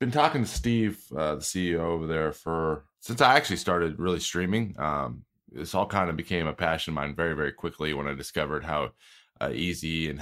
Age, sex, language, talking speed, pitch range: 20-39, male, English, 210 wpm, 80-105 Hz